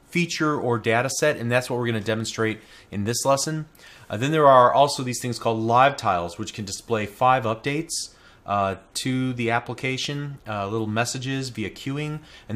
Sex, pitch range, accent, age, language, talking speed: male, 105-130 Hz, American, 30-49, English, 185 wpm